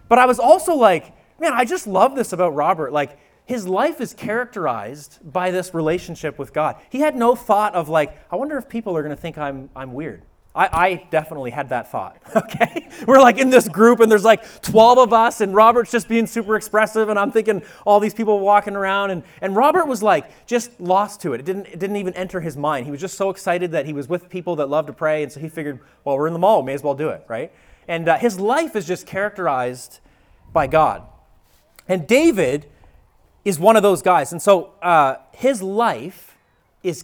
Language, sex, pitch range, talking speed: English, male, 155-215 Hz, 225 wpm